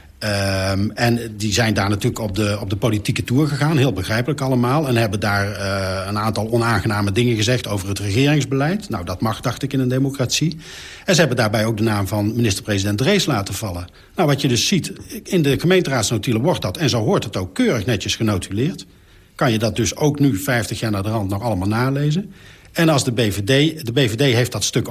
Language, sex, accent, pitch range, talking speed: Dutch, male, Dutch, 105-145 Hz, 215 wpm